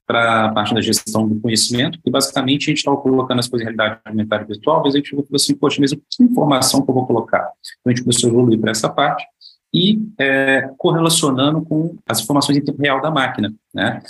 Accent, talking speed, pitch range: Brazilian, 225 wpm, 110-140 Hz